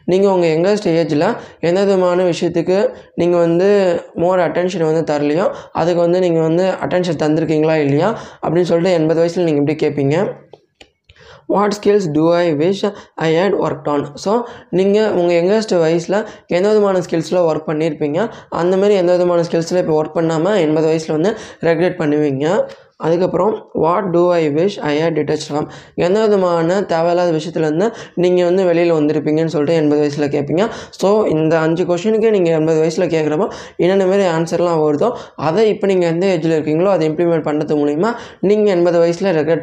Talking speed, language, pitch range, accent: 160 wpm, Tamil, 155-185 Hz, native